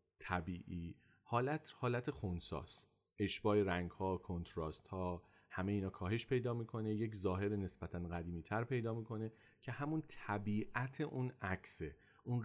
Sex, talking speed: male, 125 wpm